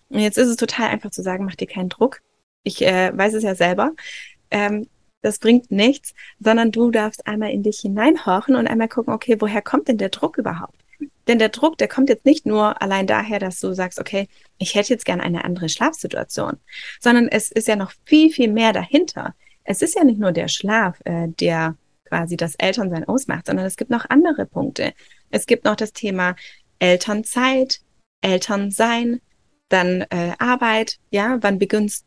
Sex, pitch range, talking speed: female, 195-245 Hz, 190 wpm